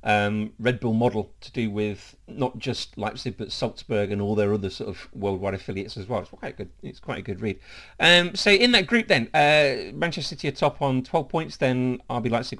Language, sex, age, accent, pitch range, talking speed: English, male, 40-59, British, 105-140 Hz, 230 wpm